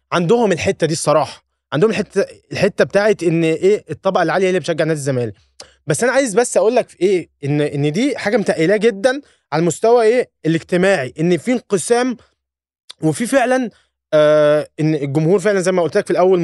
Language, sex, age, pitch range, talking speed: Arabic, male, 20-39, 150-220 Hz, 185 wpm